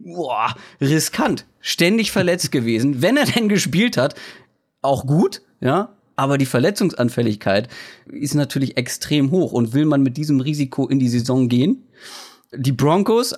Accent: German